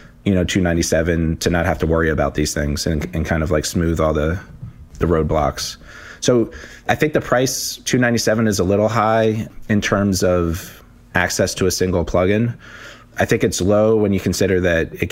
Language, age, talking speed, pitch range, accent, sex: English, 30-49, 190 wpm, 85-105 Hz, American, male